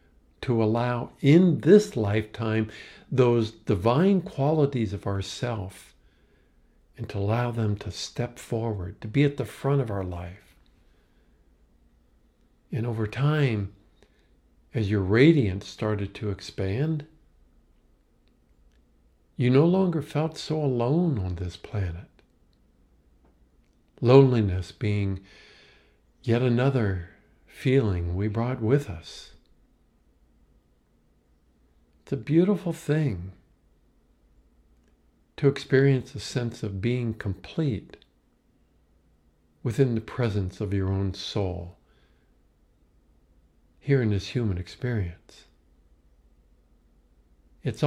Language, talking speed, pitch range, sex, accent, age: English, 95 wpm, 80-125 Hz, male, American, 50-69